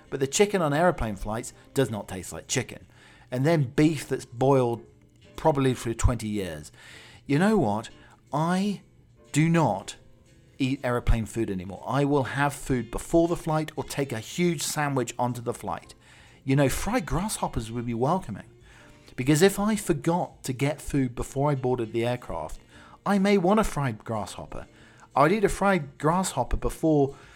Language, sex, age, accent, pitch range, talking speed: English, male, 40-59, British, 110-145 Hz, 165 wpm